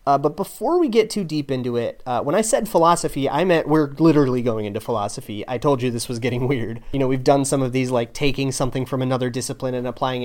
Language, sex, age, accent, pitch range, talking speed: English, male, 30-49, American, 125-160 Hz, 250 wpm